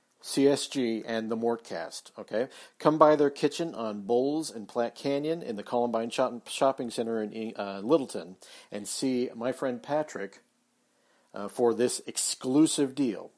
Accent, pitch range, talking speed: American, 105-140 Hz, 145 wpm